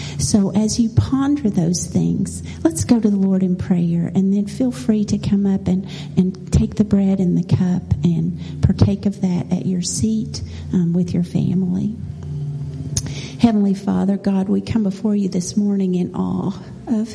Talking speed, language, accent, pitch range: 180 wpm, English, American, 175-215 Hz